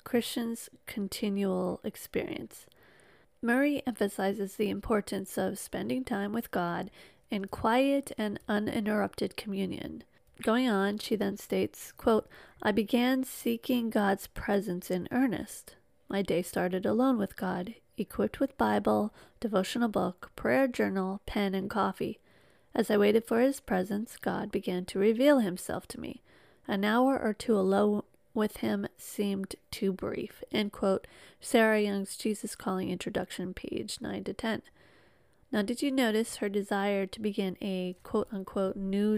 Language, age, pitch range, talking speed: English, 40-59, 195-245 Hz, 135 wpm